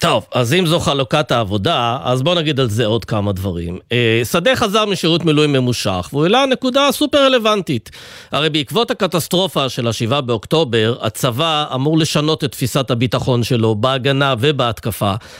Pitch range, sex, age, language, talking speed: 125-190 Hz, male, 40-59, Hebrew, 150 wpm